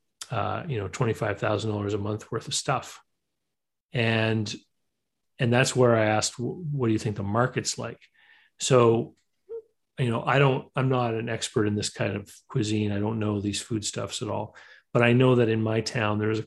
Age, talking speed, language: 30-49, 190 wpm, English